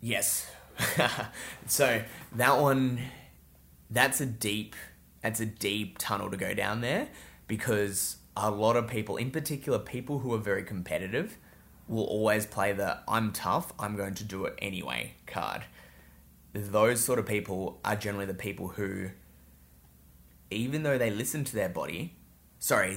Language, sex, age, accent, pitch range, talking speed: English, male, 20-39, Australian, 95-110 Hz, 145 wpm